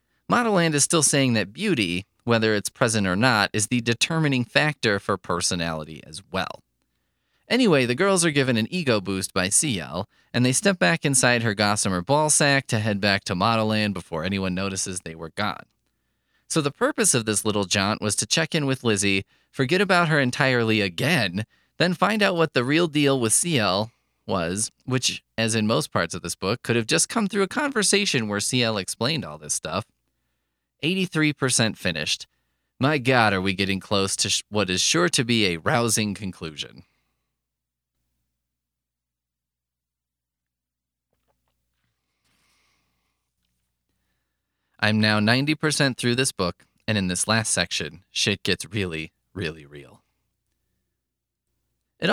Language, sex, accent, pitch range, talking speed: English, male, American, 85-130 Hz, 150 wpm